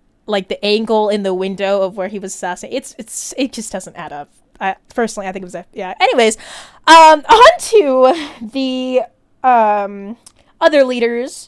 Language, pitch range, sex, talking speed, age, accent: English, 210-270 Hz, female, 180 wpm, 20-39, American